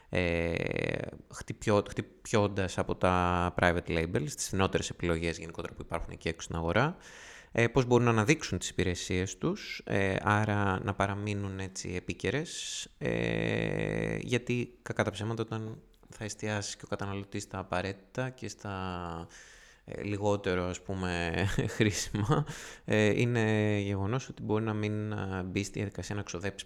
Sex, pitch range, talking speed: male, 95-120 Hz, 120 wpm